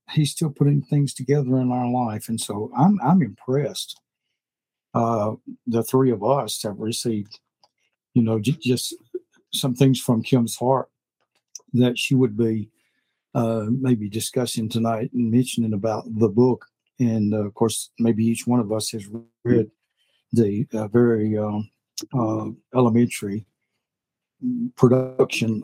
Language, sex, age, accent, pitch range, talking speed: English, male, 60-79, American, 115-130 Hz, 140 wpm